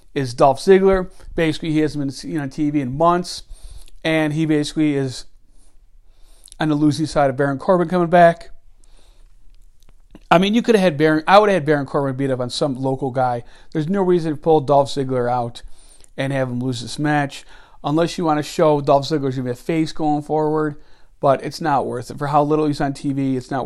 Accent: American